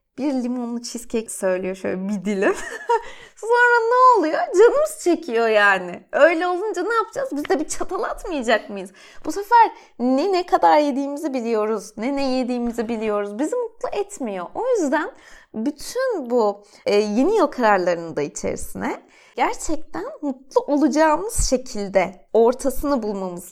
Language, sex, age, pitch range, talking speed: Turkish, female, 30-49, 235-385 Hz, 135 wpm